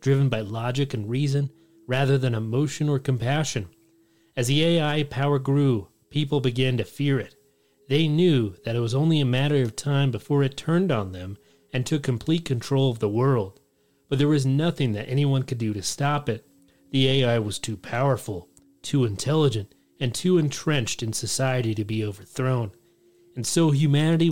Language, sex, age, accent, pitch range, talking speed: English, male, 30-49, American, 115-140 Hz, 175 wpm